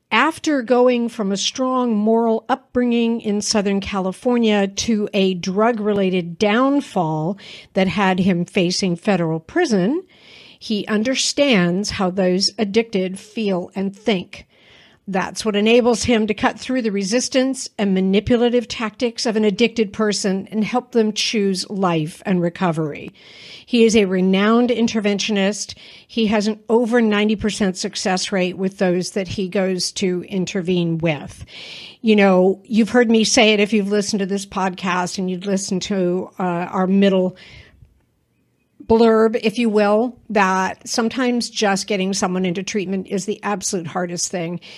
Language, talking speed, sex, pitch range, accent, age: English, 145 wpm, female, 185-225 Hz, American, 50-69